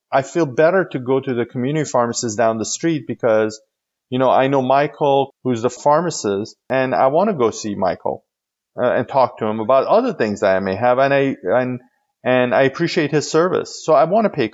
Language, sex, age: English, male, 30-49